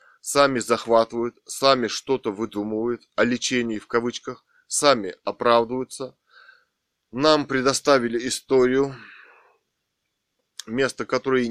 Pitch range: 115-130 Hz